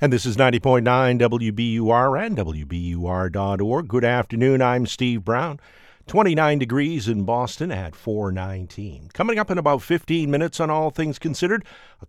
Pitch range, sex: 110-150 Hz, male